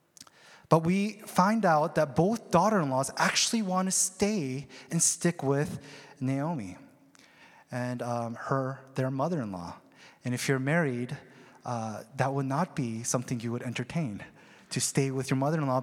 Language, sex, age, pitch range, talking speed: English, male, 30-49, 135-185 Hz, 145 wpm